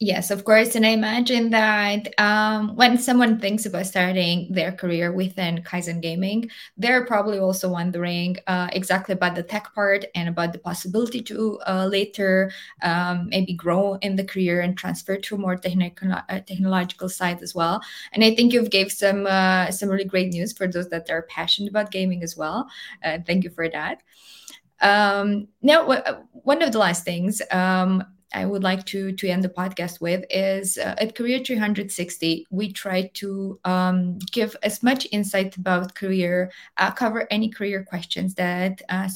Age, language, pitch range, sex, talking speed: 20-39, Romanian, 180-210 Hz, female, 180 wpm